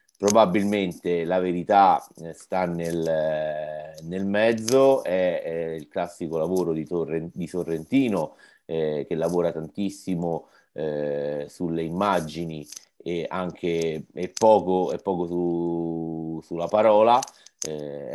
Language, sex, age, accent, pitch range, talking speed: Italian, male, 30-49, native, 80-100 Hz, 95 wpm